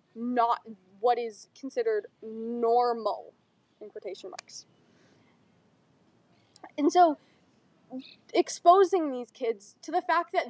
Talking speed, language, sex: 95 wpm, English, female